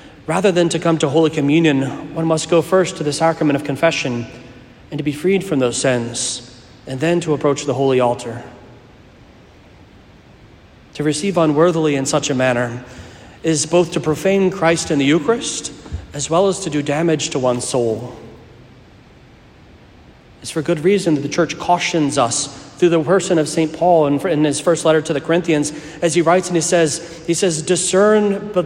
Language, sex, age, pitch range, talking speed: English, male, 30-49, 125-170 Hz, 180 wpm